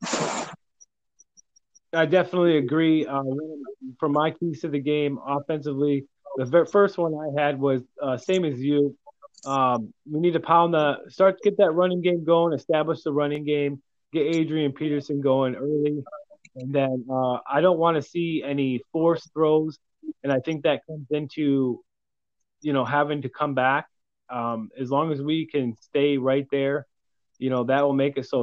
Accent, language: American, English